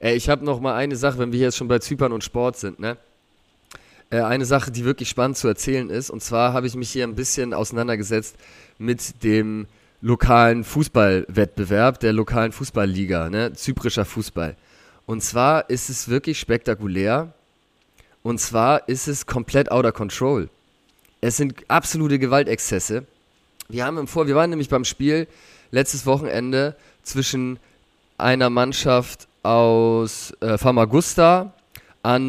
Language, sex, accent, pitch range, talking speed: German, male, German, 110-135 Hz, 145 wpm